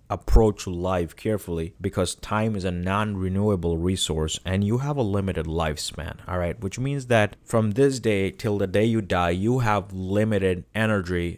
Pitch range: 90-105 Hz